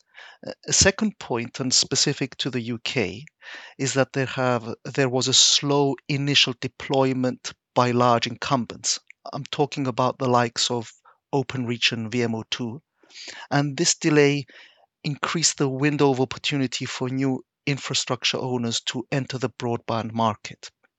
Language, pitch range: English, 125-145 Hz